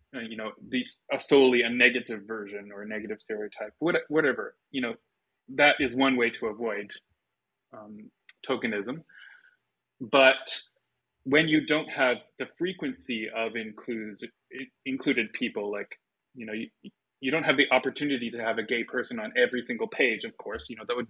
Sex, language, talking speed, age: male, English, 155 wpm, 20-39